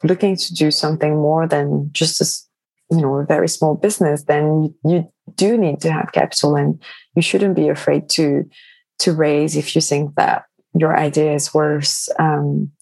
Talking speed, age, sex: 175 wpm, 20-39, female